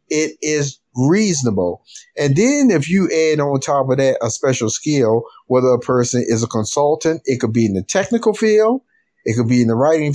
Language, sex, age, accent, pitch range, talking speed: English, male, 50-69, American, 125-180 Hz, 200 wpm